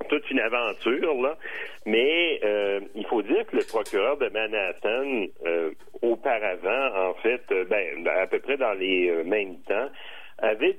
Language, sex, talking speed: French, male, 165 wpm